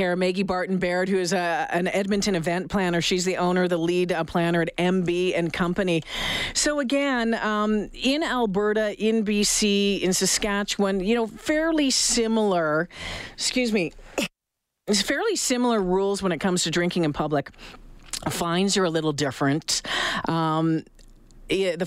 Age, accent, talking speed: 40-59, American, 135 wpm